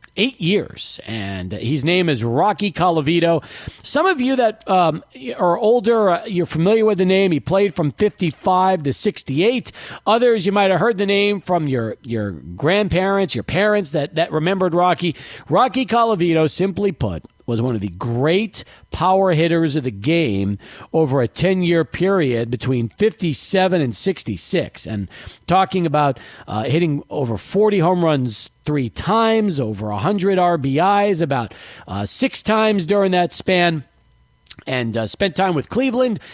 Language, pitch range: English, 135-195 Hz